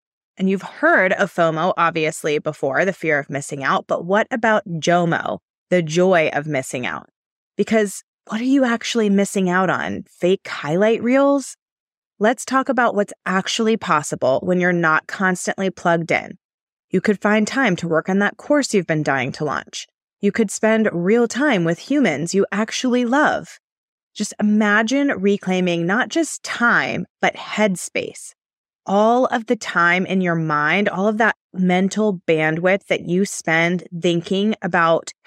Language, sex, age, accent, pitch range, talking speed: English, female, 20-39, American, 175-210 Hz, 160 wpm